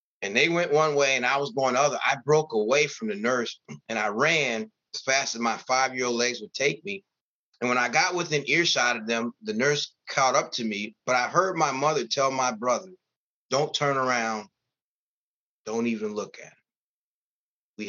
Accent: American